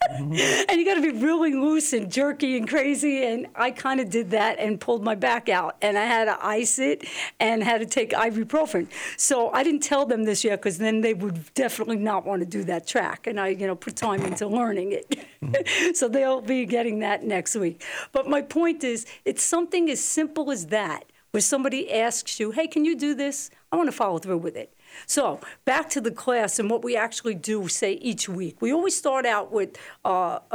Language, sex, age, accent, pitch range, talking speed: English, female, 50-69, American, 205-275 Hz, 220 wpm